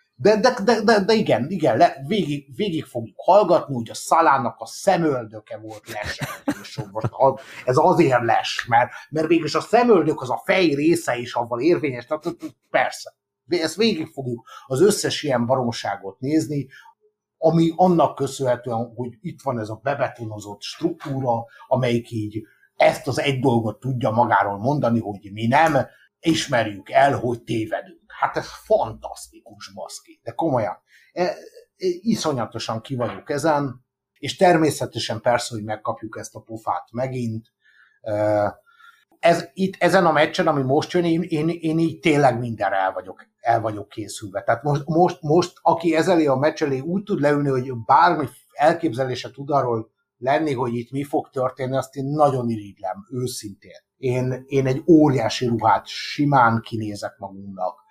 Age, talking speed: 60-79, 150 wpm